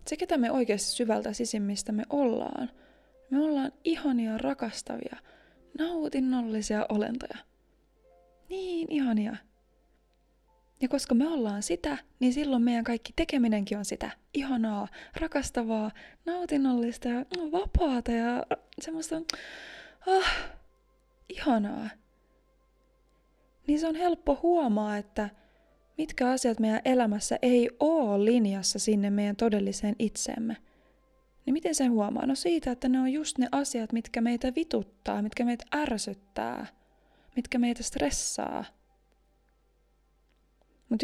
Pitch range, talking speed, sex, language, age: 220-285 Hz, 110 wpm, female, Finnish, 20-39